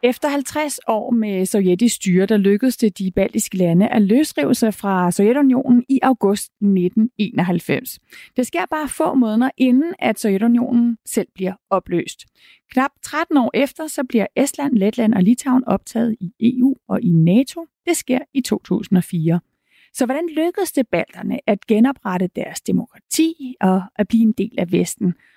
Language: Danish